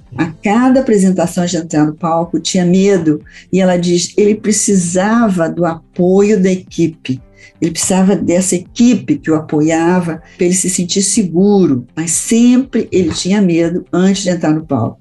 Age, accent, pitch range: 50-69, Brazilian, 165-205 Hz